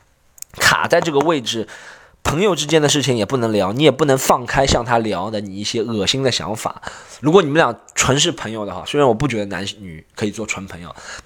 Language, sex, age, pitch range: Chinese, male, 20-39, 100-150 Hz